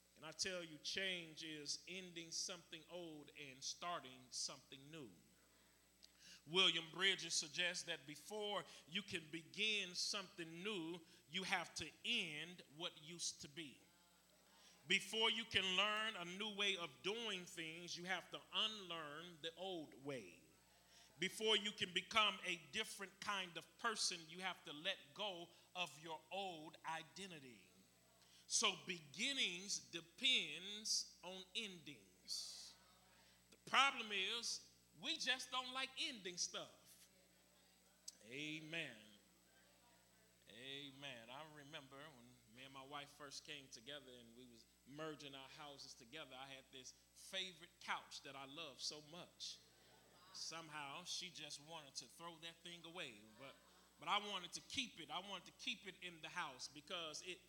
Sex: male